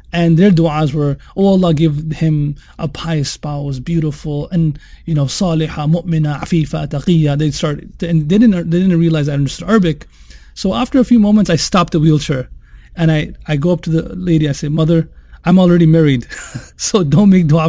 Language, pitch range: English, 145-170 Hz